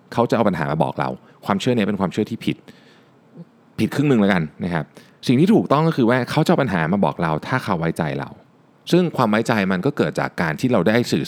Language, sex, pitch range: Thai, male, 80-120 Hz